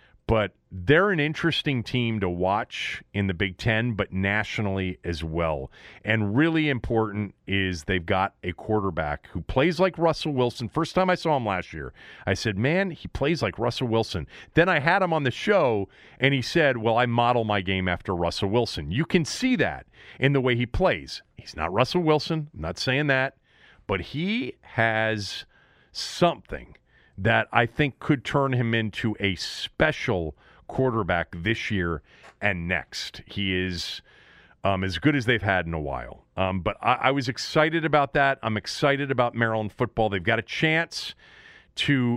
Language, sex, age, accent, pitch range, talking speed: English, male, 40-59, American, 100-140 Hz, 180 wpm